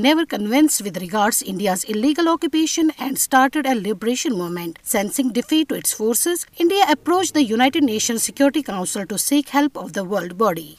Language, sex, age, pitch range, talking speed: Urdu, female, 50-69, 200-295 Hz, 170 wpm